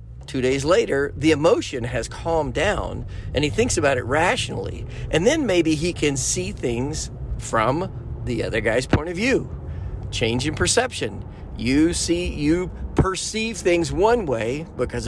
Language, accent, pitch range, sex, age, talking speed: English, American, 120-175 Hz, male, 40-59, 155 wpm